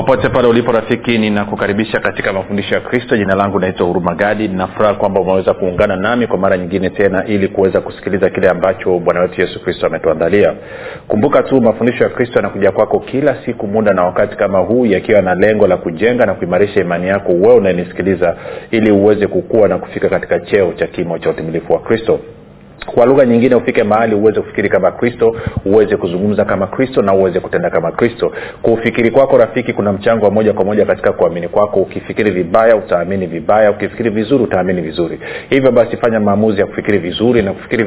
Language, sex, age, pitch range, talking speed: Swahili, male, 40-59, 95-115 Hz, 195 wpm